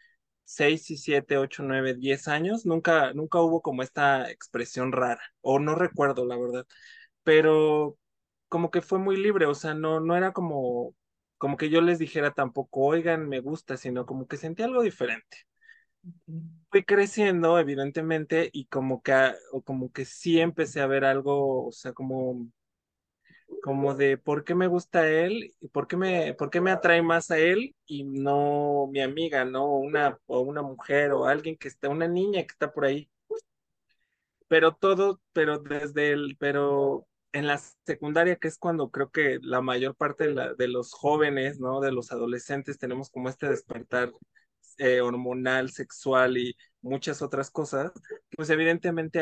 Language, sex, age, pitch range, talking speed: Spanish, male, 20-39, 135-165 Hz, 170 wpm